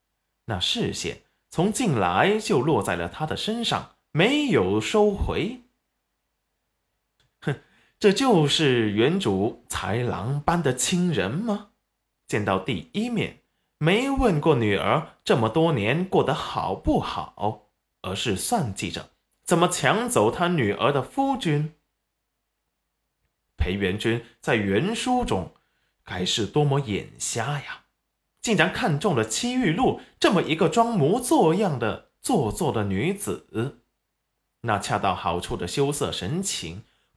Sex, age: male, 20-39